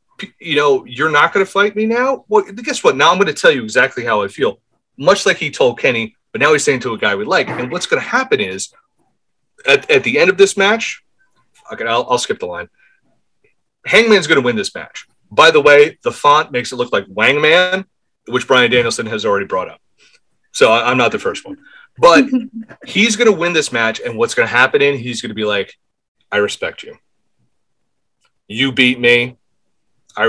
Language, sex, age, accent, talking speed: English, male, 30-49, American, 215 wpm